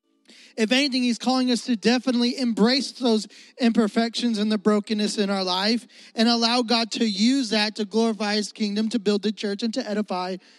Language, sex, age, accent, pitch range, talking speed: English, male, 20-39, American, 215-255 Hz, 185 wpm